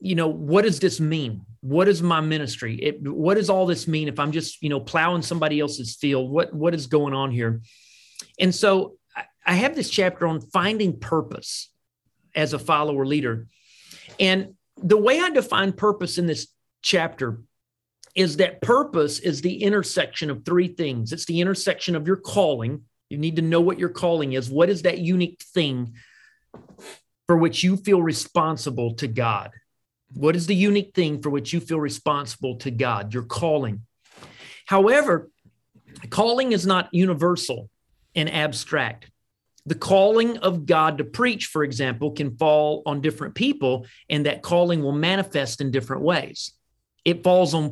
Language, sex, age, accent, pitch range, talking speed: English, male, 40-59, American, 135-180 Hz, 170 wpm